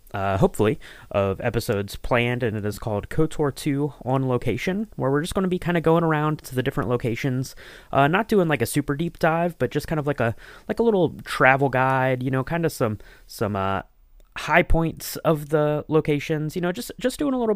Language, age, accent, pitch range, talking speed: English, 20-39, American, 115-160 Hz, 220 wpm